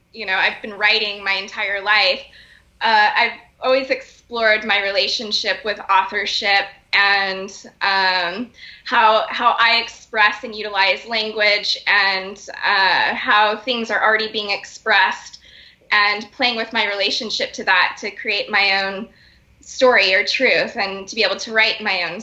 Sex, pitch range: female, 200-240 Hz